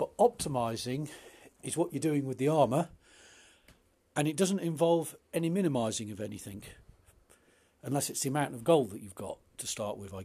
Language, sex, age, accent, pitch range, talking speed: English, male, 40-59, British, 115-170 Hz, 175 wpm